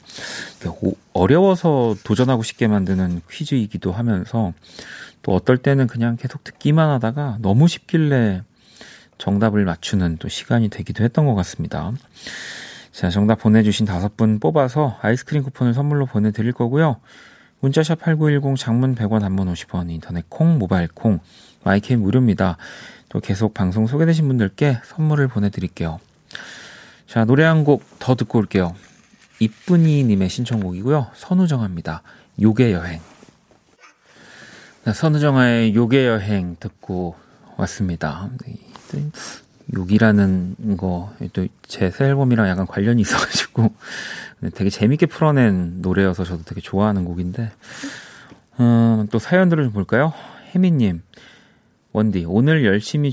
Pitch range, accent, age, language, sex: 95-135 Hz, native, 40-59, Korean, male